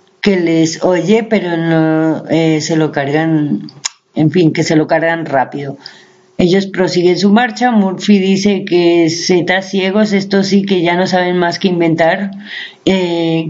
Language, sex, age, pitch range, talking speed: Spanish, female, 30-49, 175-210 Hz, 155 wpm